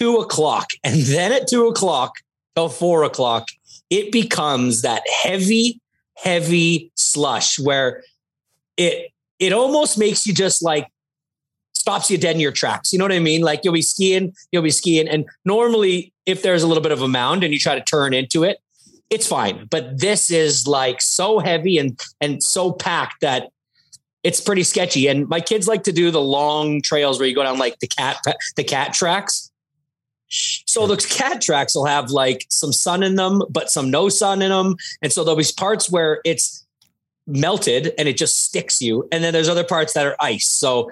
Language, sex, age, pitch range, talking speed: English, male, 30-49, 140-185 Hz, 195 wpm